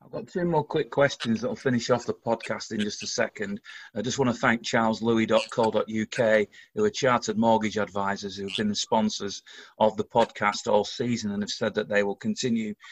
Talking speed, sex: 205 wpm, male